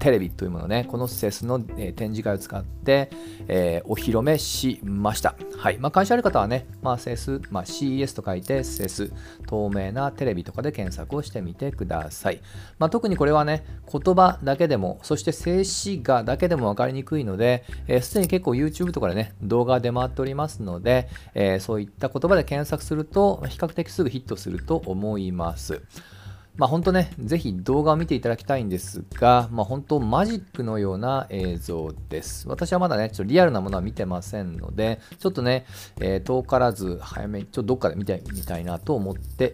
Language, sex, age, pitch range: Japanese, male, 40-59, 100-150 Hz